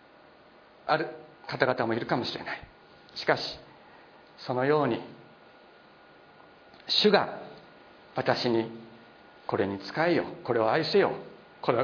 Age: 50-69